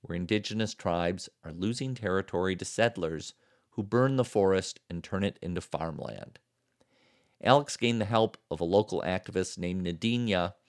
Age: 50-69